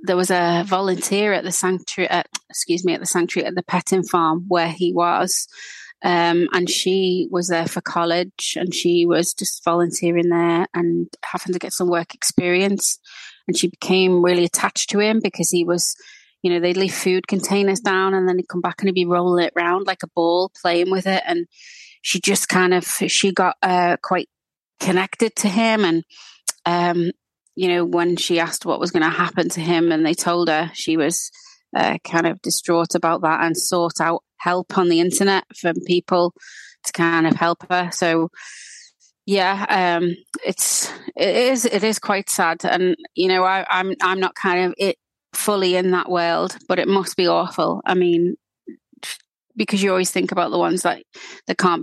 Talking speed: 195 wpm